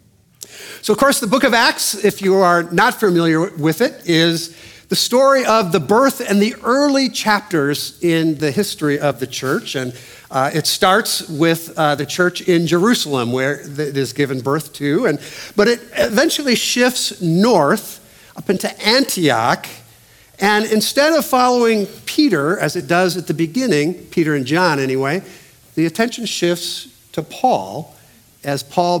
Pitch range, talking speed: 145-215 Hz, 160 wpm